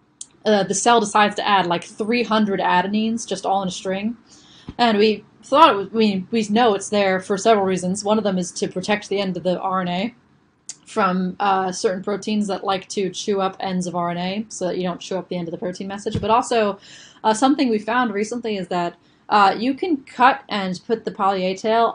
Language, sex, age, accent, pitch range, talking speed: English, female, 20-39, American, 185-215 Hz, 220 wpm